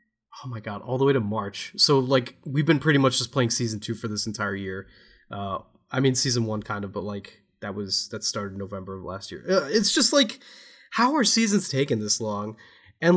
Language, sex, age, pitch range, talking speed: English, male, 20-39, 120-160 Hz, 230 wpm